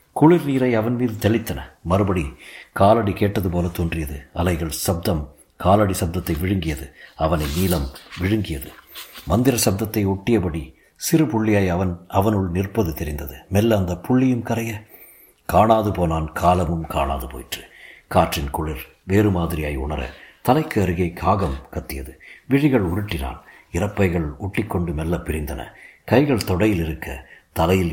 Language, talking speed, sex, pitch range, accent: Tamil, 120 wpm, male, 85-105 Hz, native